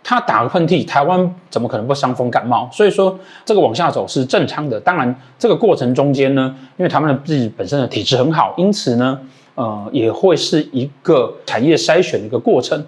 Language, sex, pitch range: Chinese, male, 130-170 Hz